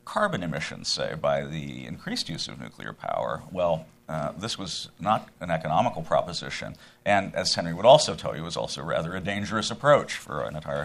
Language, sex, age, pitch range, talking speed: English, male, 50-69, 80-120 Hz, 195 wpm